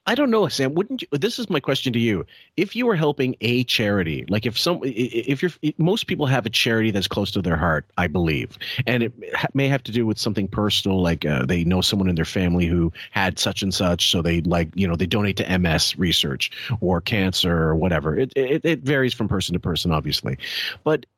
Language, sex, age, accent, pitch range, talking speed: English, male, 40-59, American, 95-130 Hz, 230 wpm